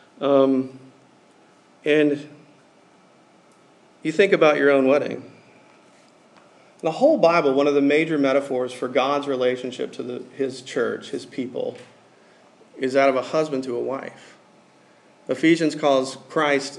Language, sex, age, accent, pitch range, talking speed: English, male, 40-59, American, 130-150 Hz, 125 wpm